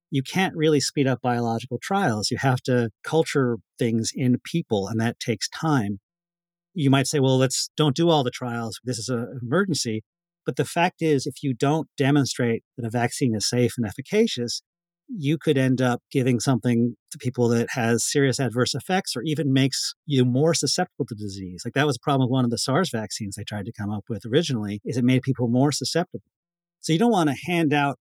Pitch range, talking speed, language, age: 120-155 Hz, 210 wpm, English, 40-59